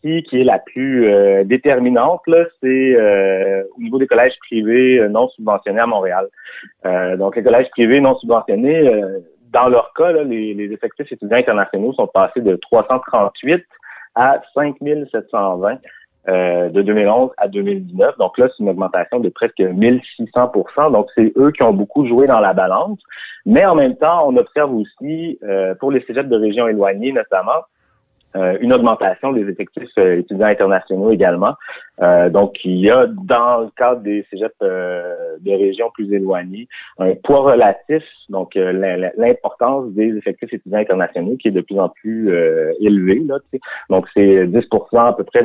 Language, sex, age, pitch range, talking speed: French, male, 30-49, 100-155 Hz, 170 wpm